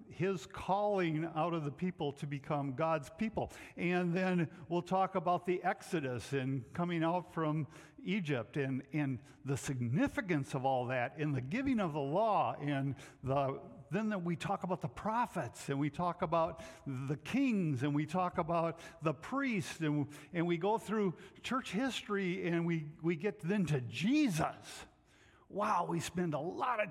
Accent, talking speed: American, 170 wpm